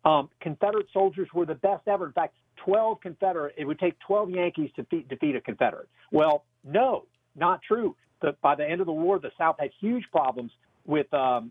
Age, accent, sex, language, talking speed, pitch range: 50-69, American, male, English, 205 wpm, 135-200 Hz